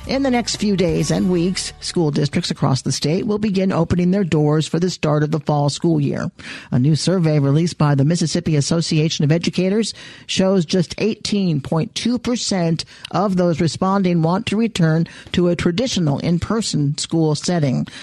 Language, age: English, 50-69